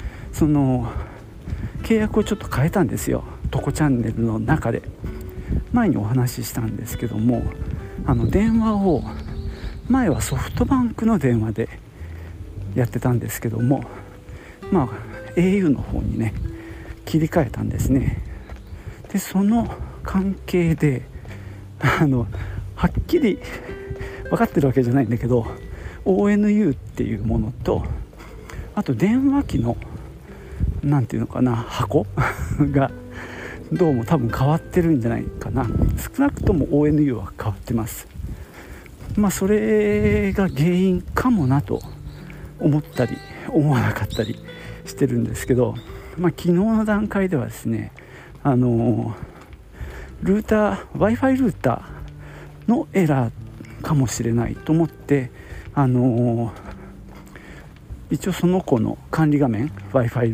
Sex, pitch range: male, 105-160 Hz